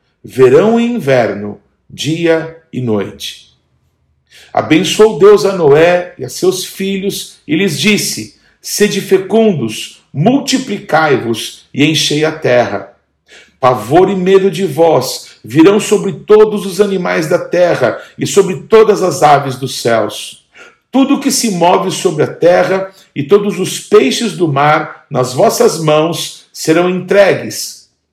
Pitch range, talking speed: 150-210 Hz, 130 wpm